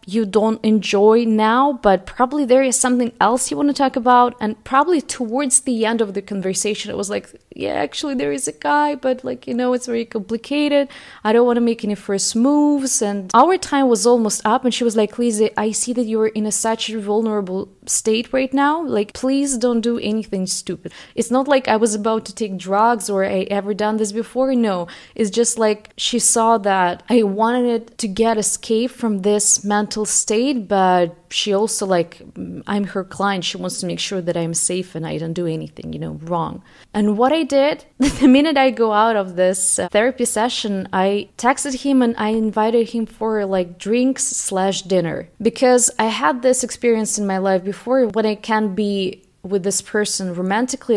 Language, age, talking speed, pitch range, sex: English, 20-39, 200 wpm, 195-245 Hz, female